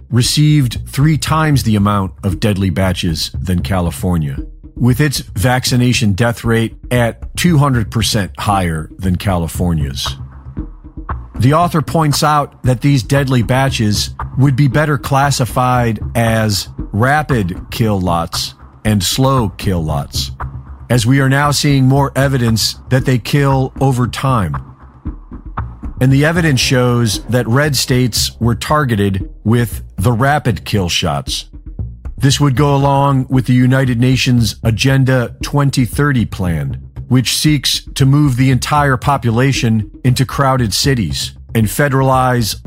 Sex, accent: male, American